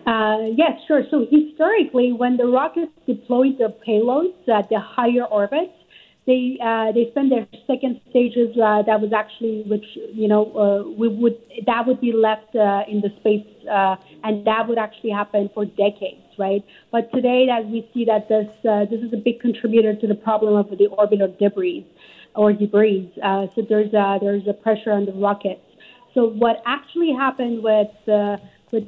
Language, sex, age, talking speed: English, female, 30-49, 185 wpm